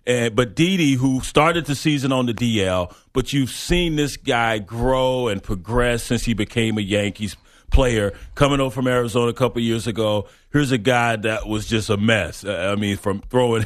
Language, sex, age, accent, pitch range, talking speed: English, male, 40-59, American, 115-135 Hz, 200 wpm